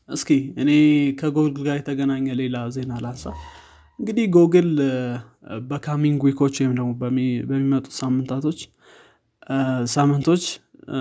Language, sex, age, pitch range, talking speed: Amharic, male, 20-39, 125-145 Hz, 85 wpm